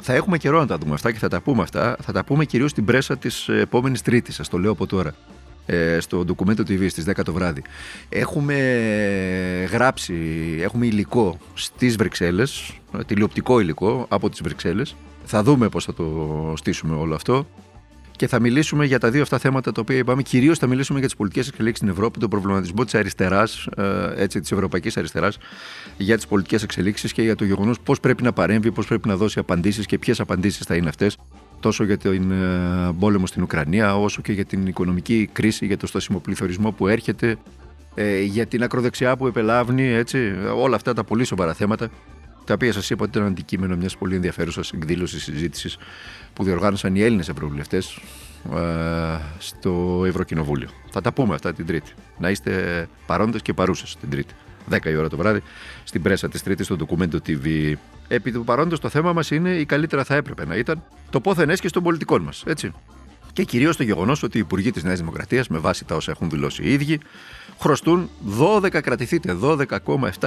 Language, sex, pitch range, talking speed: Greek, male, 90-125 Hz, 180 wpm